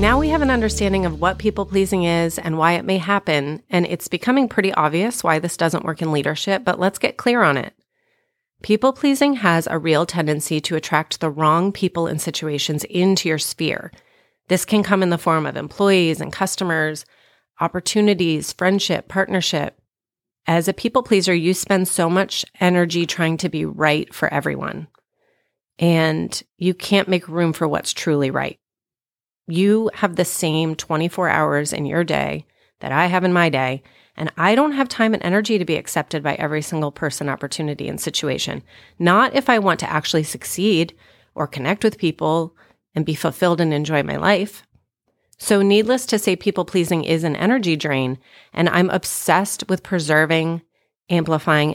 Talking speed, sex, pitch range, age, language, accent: 170 wpm, female, 155-195 Hz, 30-49, English, American